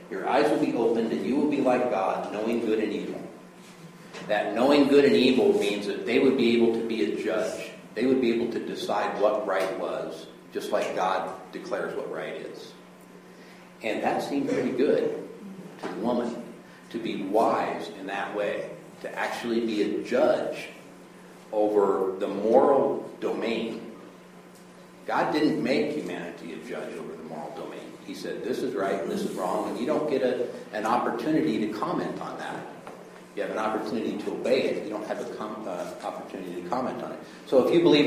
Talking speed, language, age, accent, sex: 190 wpm, English, 50-69, American, male